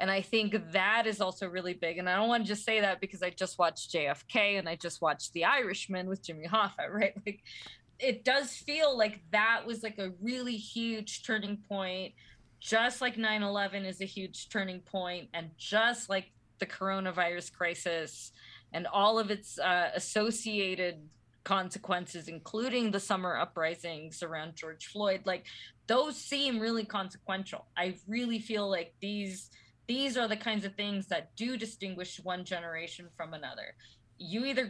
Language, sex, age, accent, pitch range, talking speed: English, female, 20-39, American, 175-220 Hz, 170 wpm